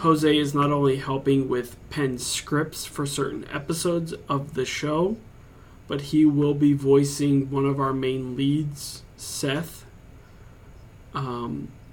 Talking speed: 130 wpm